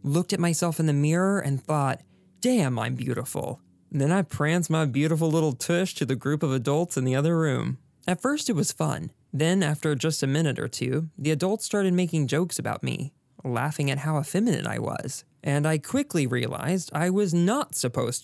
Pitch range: 135-175 Hz